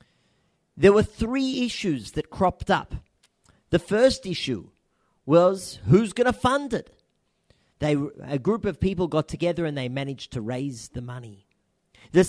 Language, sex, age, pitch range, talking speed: English, male, 40-59, 135-195 Hz, 145 wpm